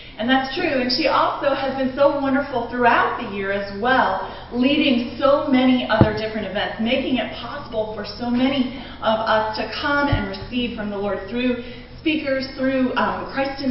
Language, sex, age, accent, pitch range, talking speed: English, female, 30-49, American, 210-260 Hz, 185 wpm